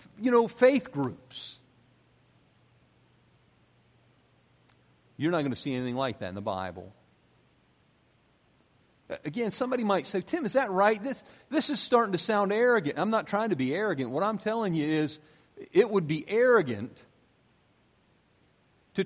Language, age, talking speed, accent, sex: English, 50-69, 145 wpm, American, male